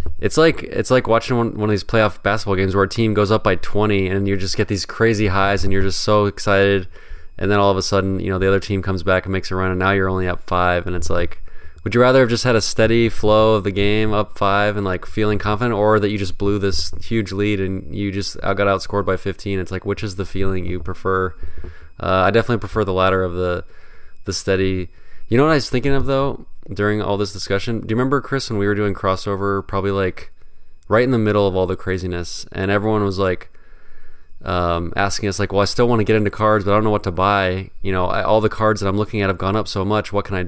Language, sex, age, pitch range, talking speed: English, male, 20-39, 95-105 Hz, 265 wpm